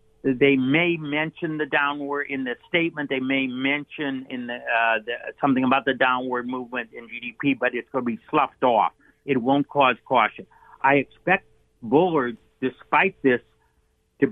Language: English